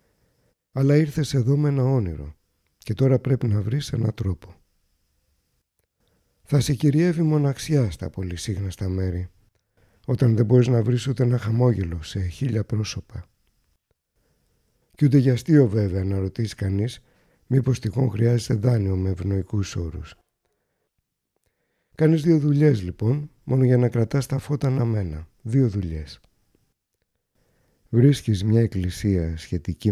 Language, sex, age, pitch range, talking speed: Greek, male, 60-79, 95-130 Hz, 130 wpm